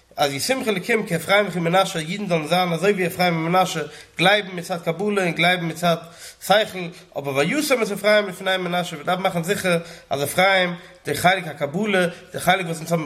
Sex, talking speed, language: male, 85 wpm, English